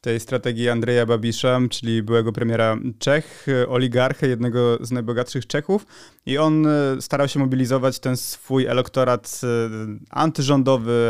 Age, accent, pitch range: 20-39, native, 120-135 Hz